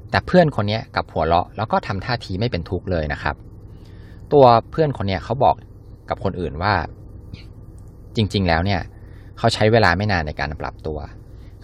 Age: 20-39